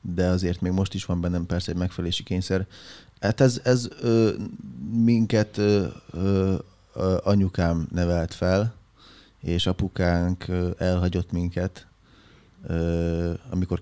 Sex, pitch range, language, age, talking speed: male, 90-95 Hz, Hungarian, 20-39, 100 wpm